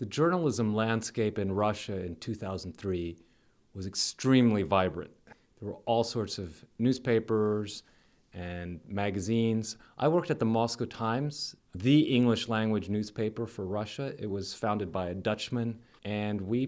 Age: 30-49